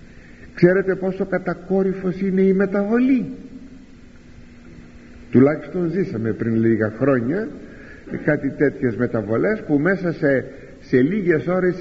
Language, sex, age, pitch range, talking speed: Greek, male, 50-69, 115-180 Hz, 100 wpm